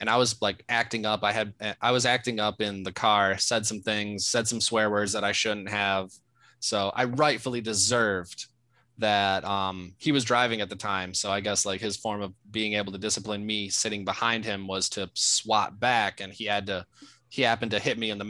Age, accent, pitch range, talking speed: 20-39, American, 105-125 Hz, 225 wpm